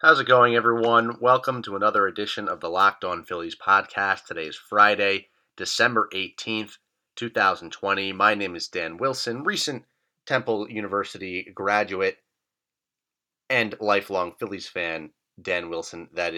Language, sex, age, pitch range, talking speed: English, male, 30-49, 95-125 Hz, 130 wpm